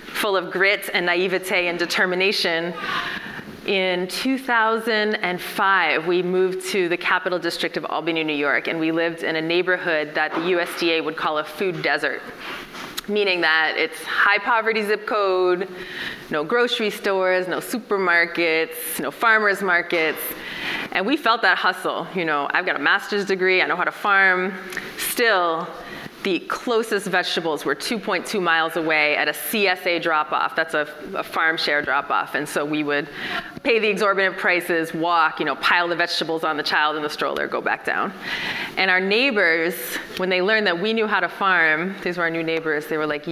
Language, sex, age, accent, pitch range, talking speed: English, female, 20-39, American, 165-200 Hz, 175 wpm